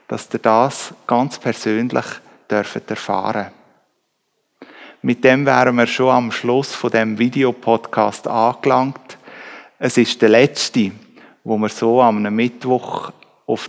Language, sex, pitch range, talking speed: German, male, 110-125 Hz, 125 wpm